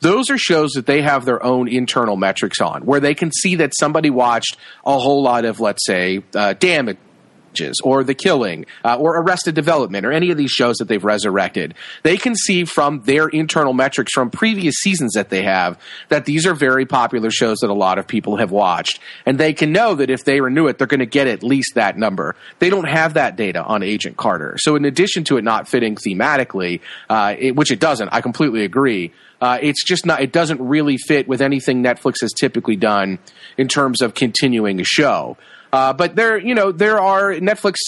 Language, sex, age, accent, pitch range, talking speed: English, male, 40-59, American, 120-160 Hz, 215 wpm